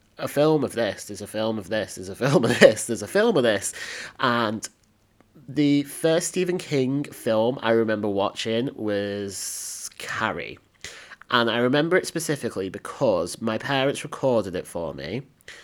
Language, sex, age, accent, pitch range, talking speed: English, male, 30-49, British, 100-130 Hz, 160 wpm